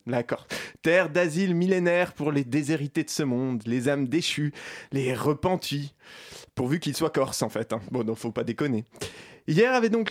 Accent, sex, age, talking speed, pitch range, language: French, male, 20-39, 180 wpm, 145-210 Hz, French